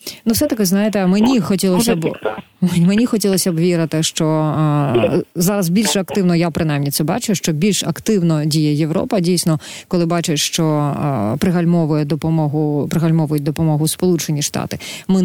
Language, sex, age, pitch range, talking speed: Ukrainian, female, 30-49, 150-175 Hz, 140 wpm